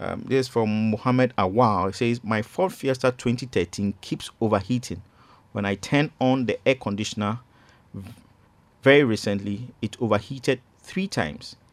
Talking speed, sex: 140 wpm, male